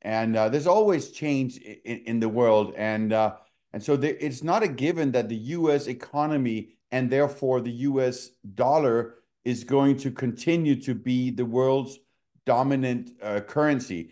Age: 50-69